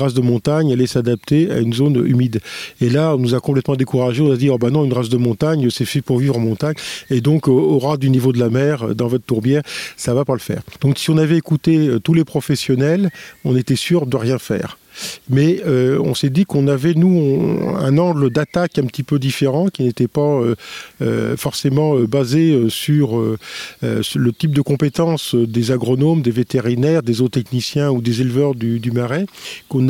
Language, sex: French, male